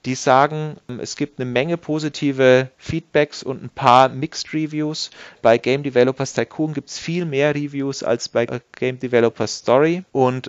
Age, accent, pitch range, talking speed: 30-49, German, 115-135 Hz, 160 wpm